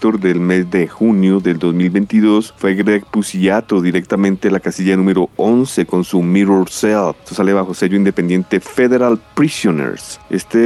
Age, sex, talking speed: 30-49, male, 145 wpm